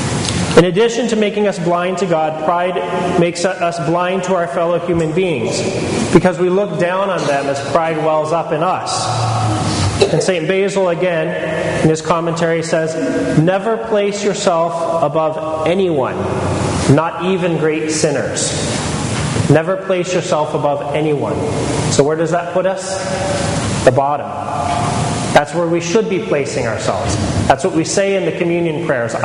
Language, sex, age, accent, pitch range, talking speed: English, male, 30-49, American, 150-185 Hz, 150 wpm